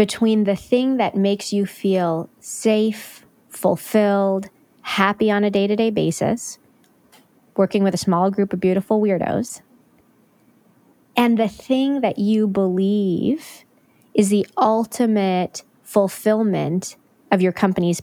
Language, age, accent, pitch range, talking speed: English, 20-39, American, 180-220 Hz, 115 wpm